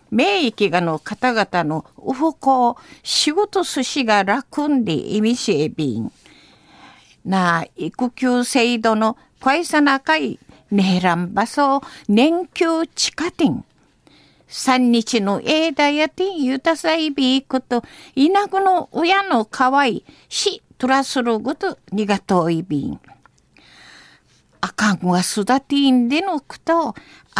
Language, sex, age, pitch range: Japanese, female, 50-69, 215-330 Hz